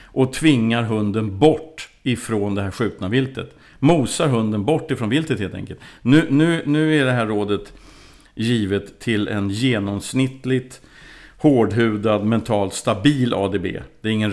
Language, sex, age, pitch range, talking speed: Swedish, male, 50-69, 110-135 Hz, 140 wpm